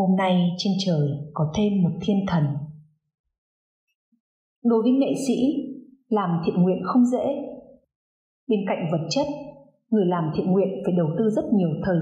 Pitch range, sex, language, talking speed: 175-225 Hz, female, Vietnamese, 160 wpm